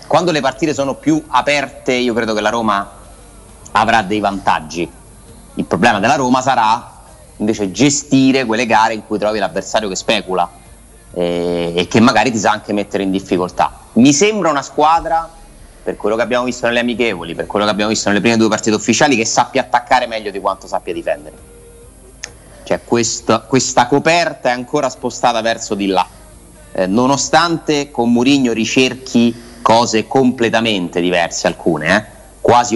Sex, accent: male, native